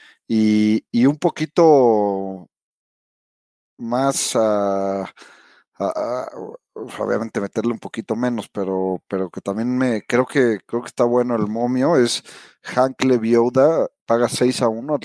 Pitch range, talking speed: 100-125 Hz, 130 wpm